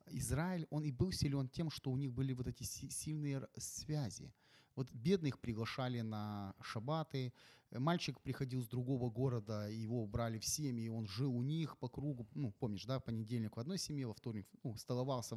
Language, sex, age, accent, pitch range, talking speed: Ukrainian, male, 30-49, native, 115-150 Hz, 180 wpm